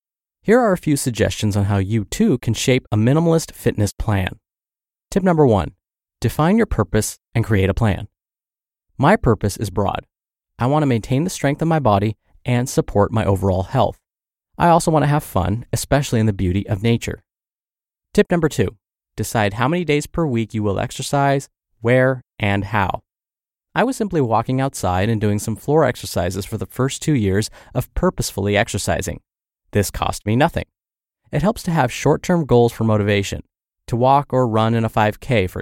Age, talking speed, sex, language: 30-49, 180 wpm, male, English